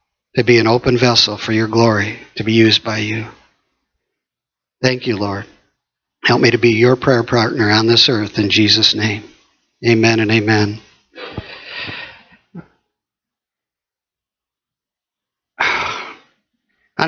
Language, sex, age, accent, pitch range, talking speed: English, male, 50-69, American, 115-150 Hz, 115 wpm